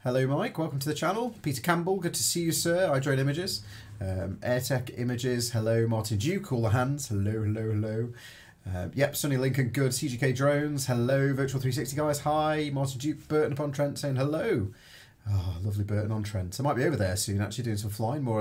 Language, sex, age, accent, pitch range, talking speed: English, male, 30-49, British, 100-135 Hz, 205 wpm